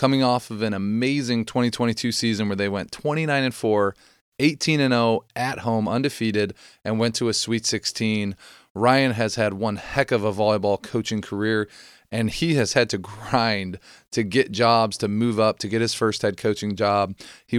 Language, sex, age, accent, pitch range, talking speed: English, male, 30-49, American, 105-125 Hz, 175 wpm